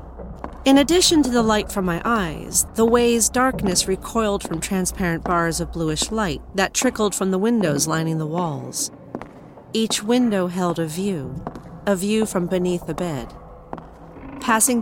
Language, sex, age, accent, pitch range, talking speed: English, female, 40-59, American, 165-220 Hz, 155 wpm